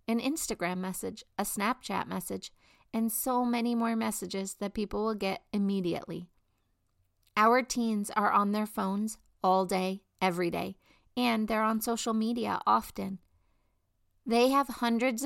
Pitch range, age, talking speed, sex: 190-230 Hz, 40-59, 140 wpm, female